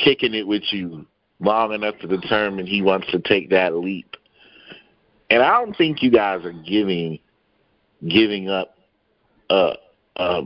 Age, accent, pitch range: 30-49, American, 90-110 Hz